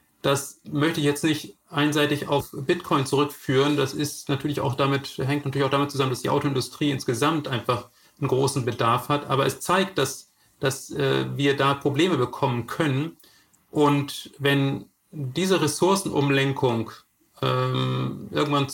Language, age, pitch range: German, 40-59, 130-150 Hz